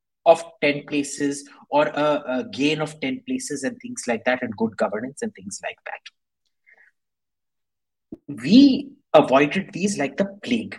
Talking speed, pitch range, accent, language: 150 wpm, 145-225 Hz, Indian, English